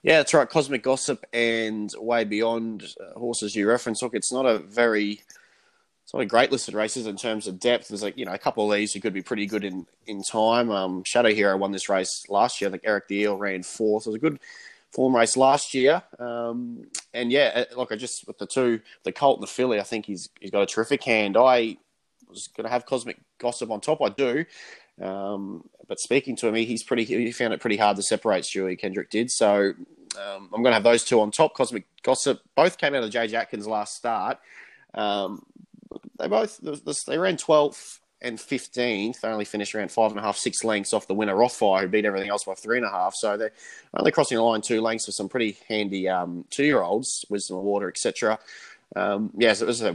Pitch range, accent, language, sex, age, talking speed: 100-120 Hz, Australian, English, male, 20-39, 230 wpm